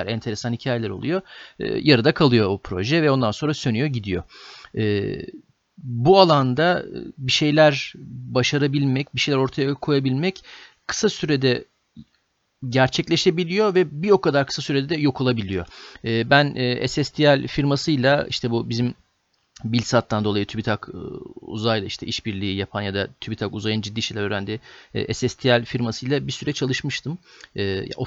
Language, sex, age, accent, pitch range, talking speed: Turkish, male, 40-59, native, 110-140 Hz, 135 wpm